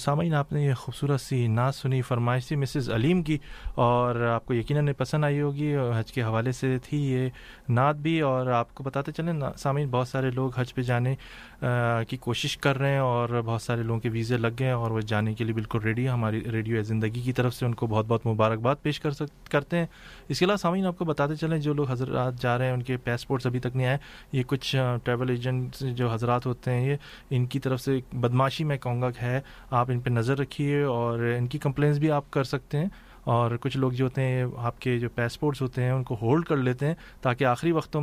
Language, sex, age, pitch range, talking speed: English, male, 30-49, 120-140 Hz, 190 wpm